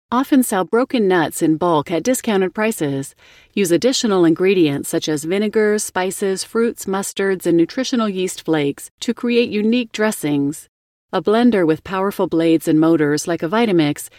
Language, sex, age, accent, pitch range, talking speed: English, female, 40-59, American, 165-220 Hz, 150 wpm